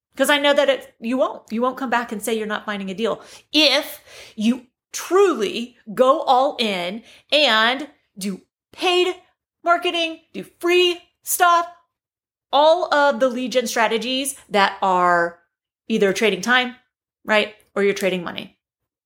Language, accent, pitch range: English, American, 220-295 Hz